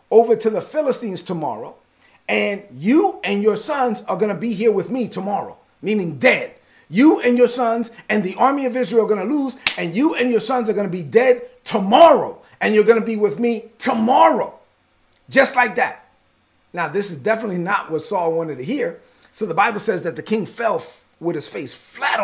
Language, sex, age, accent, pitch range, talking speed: English, male, 30-49, American, 175-245 Hz, 210 wpm